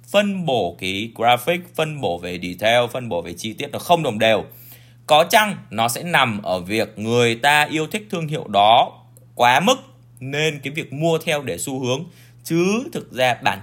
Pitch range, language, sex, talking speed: 110-160 Hz, Vietnamese, male, 200 wpm